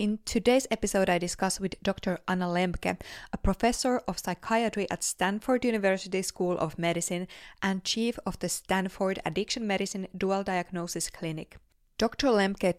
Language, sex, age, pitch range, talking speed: English, female, 20-39, 175-205 Hz, 145 wpm